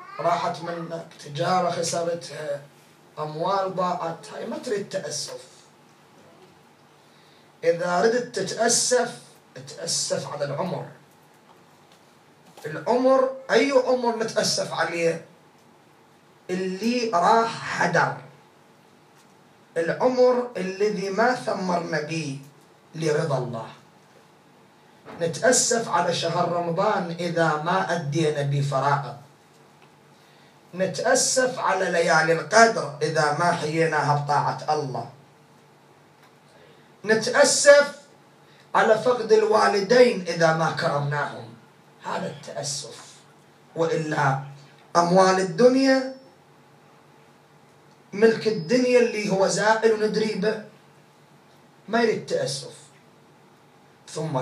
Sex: male